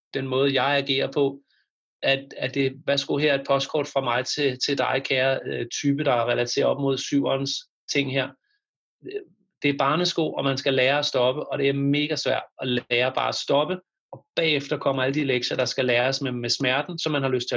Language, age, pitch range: Danish, 30-49, 135-155 Hz